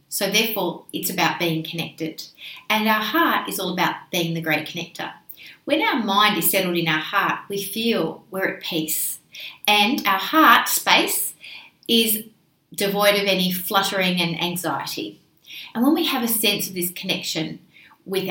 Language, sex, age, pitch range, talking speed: English, female, 40-59, 175-215 Hz, 165 wpm